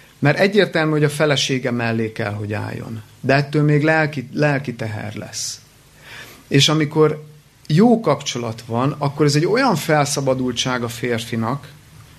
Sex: male